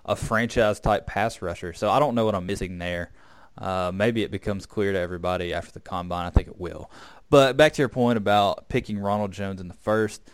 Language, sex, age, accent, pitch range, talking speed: English, male, 20-39, American, 100-115 Hz, 225 wpm